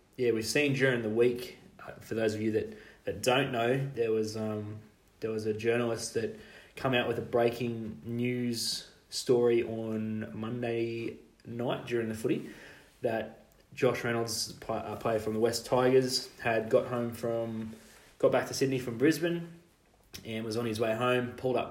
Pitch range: 110-125 Hz